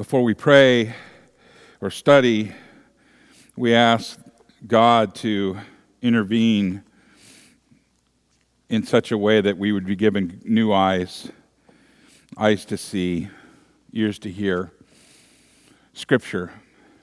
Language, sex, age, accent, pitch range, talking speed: English, male, 50-69, American, 105-135 Hz, 100 wpm